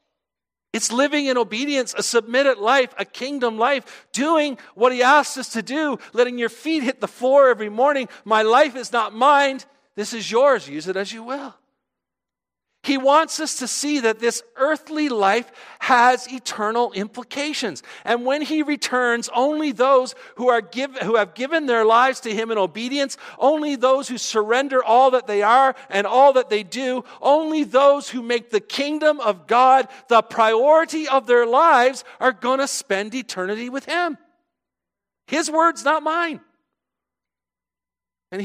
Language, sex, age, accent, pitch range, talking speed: English, male, 50-69, American, 225-280 Hz, 165 wpm